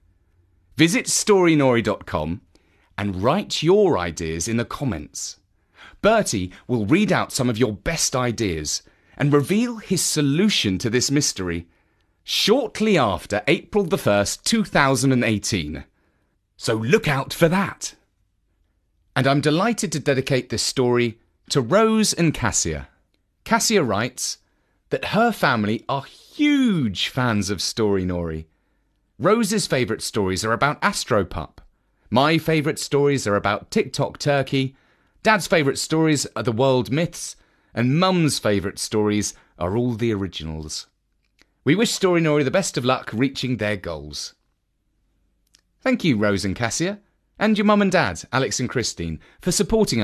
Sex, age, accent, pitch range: male, 30-49, British, 95-160 Hz